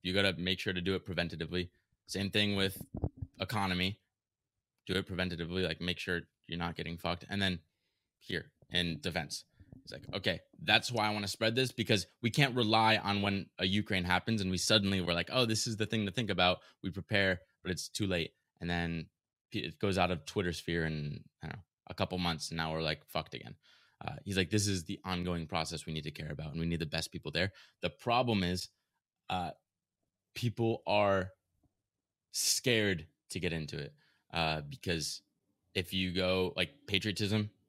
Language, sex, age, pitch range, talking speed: English, male, 20-39, 85-105 Hz, 195 wpm